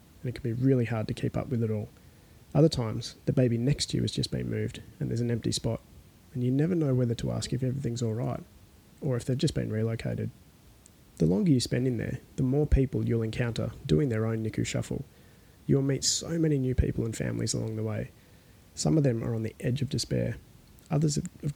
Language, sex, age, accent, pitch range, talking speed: English, male, 20-39, Australian, 110-130 Hz, 225 wpm